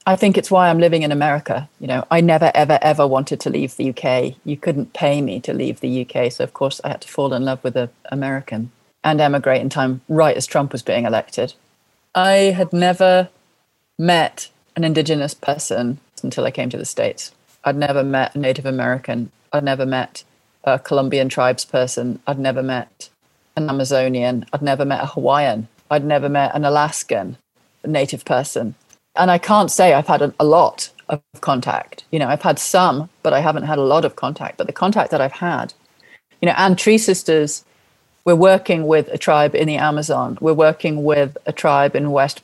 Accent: British